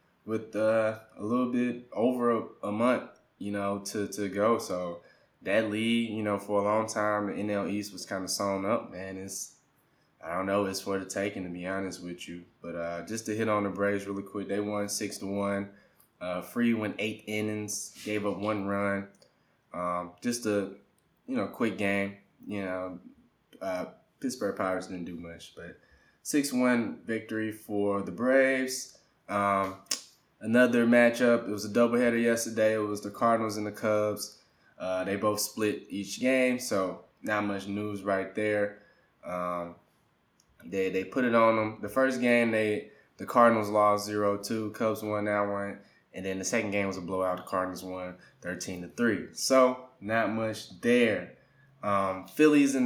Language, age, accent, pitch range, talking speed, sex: English, 20-39, American, 100-115 Hz, 175 wpm, male